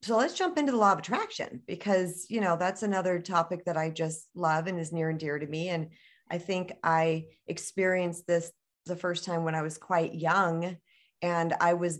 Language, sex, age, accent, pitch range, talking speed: English, female, 40-59, American, 170-210 Hz, 210 wpm